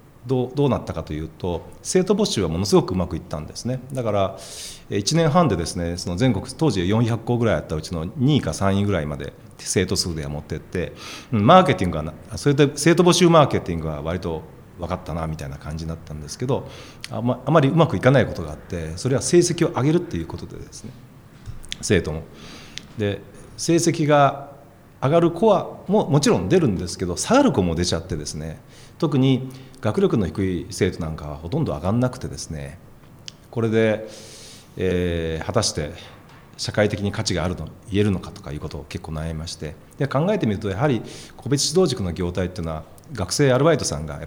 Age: 40-59